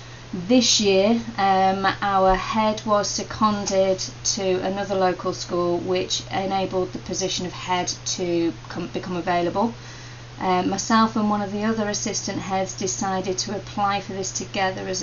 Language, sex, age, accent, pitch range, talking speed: English, female, 30-49, British, 170-195 Hz, 145 wpm